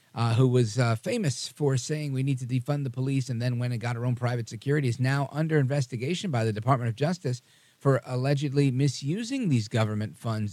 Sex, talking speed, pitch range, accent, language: male, 210 wpm, 110-130 Hz, American, English